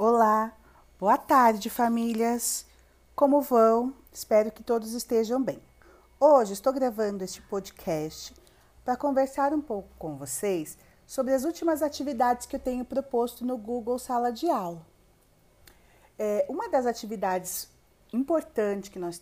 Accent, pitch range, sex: Brazilian, 205-265 Hz, female